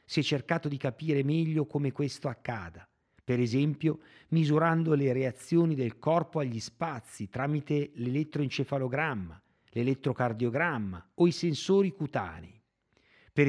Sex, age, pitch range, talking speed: male, 50-69, 115-155 Hz, 115 wpm